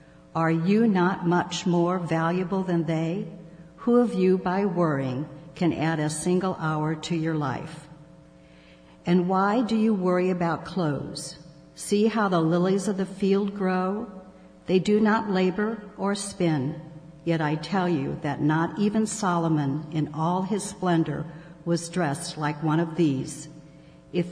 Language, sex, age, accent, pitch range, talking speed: English, female, 60-79, American, 155-185 Hz, 150 wpm